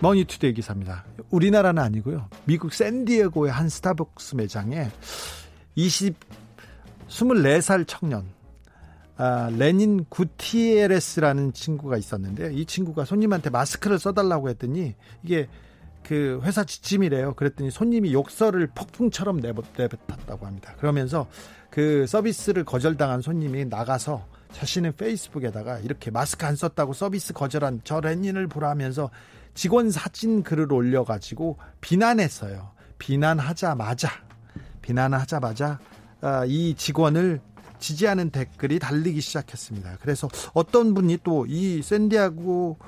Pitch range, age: 125-175 Hz, 40-59